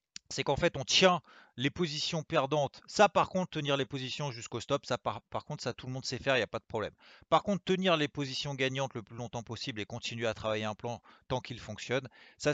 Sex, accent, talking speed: male, French, 250 wpm